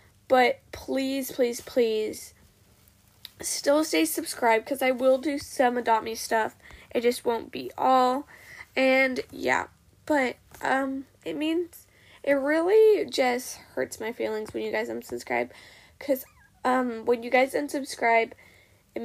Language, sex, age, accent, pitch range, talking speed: English, female, 10-29, American, 220-265 Hz, 135 wpm